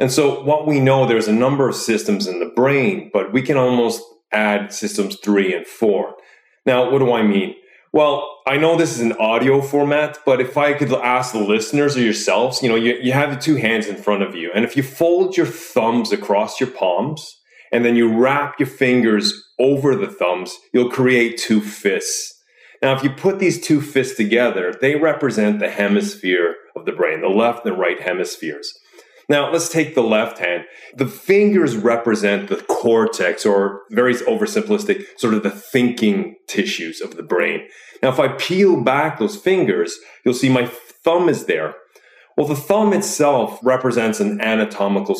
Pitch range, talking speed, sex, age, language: 115-175 Hz, 185 wpm, male, 30-49, English